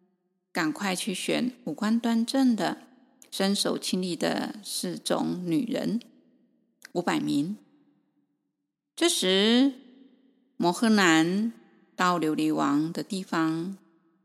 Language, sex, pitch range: Chinese, female, 180-275 Hz